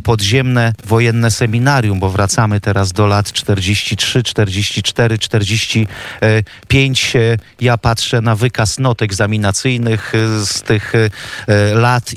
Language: Polish